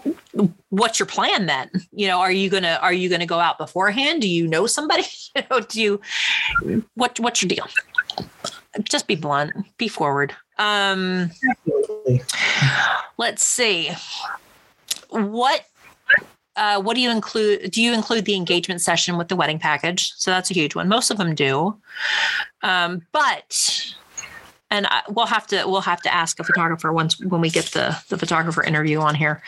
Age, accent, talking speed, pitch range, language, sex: 30-49, American, 175 wpm, 175-230 Hz, English, female